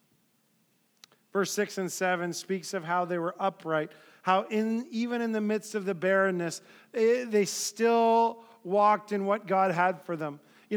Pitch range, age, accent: 125-205 Hz, 40-59, American